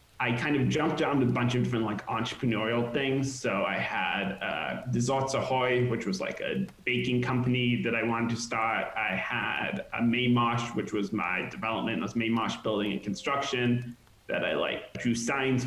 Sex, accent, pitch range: male, American, 110-125 Hz